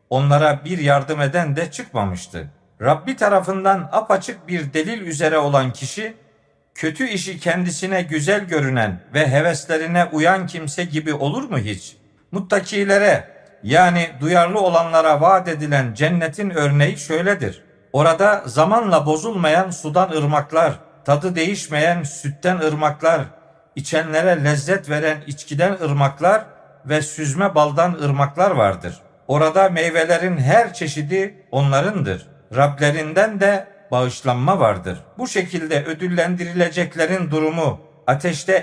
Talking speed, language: 105 wpm, Turkish